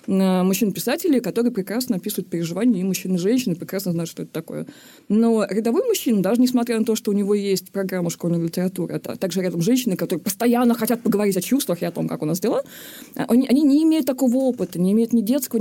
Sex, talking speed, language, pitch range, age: female, 210 wpm, Russian, 195-260 Hz, 20-39